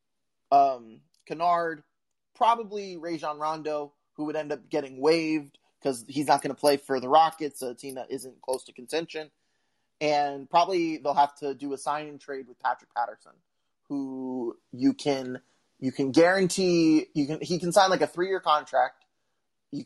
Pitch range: 145-195 Hz